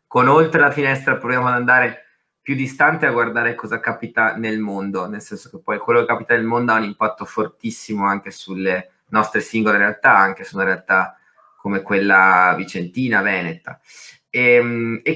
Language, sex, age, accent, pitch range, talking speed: Italian, male, 30-49, native, 105-125 Hz, 170 wpm